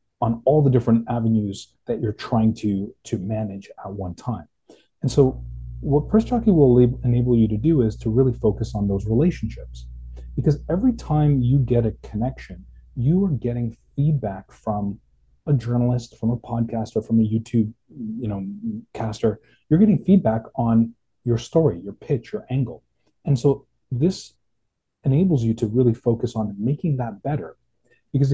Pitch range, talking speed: 110-140 Hz, 165 wpm